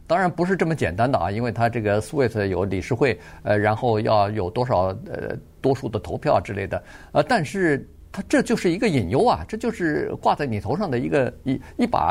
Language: Chinese